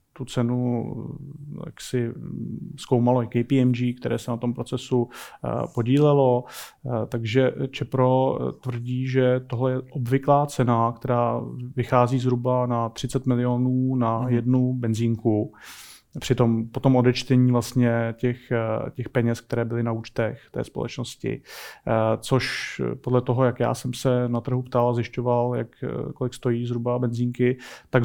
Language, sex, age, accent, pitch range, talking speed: Czech, male, 30-49, native, 120-130 Hz, 130 wpm